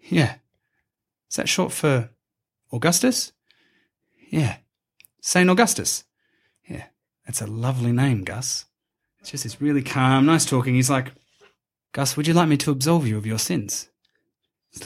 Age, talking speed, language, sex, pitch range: 30-49, 145 wpm, English, male, 115-165 Hz